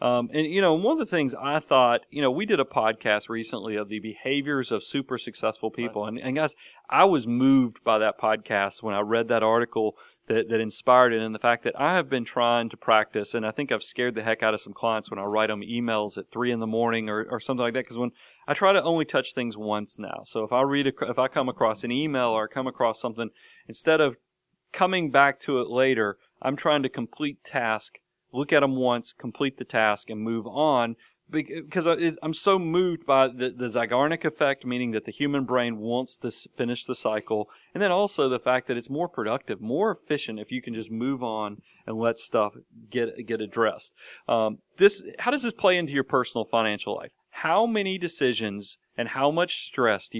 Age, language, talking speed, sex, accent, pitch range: 40-59, English, 220 wpm, male, American, 110-140 Hz